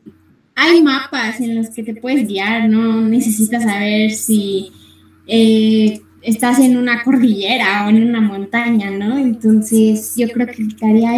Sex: female